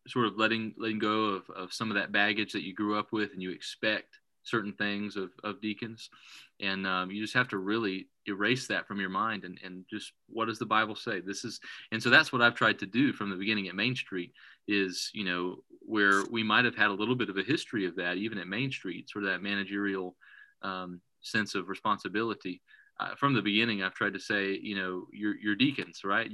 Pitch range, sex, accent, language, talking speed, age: 95-110 Hz, male, American, English, 230 wpm, 30-49